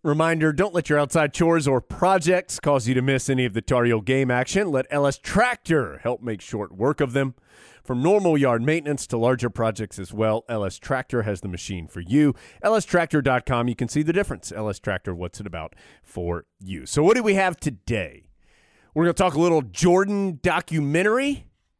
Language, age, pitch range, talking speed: English, 30-49, 125-165 Hz, 195 wpm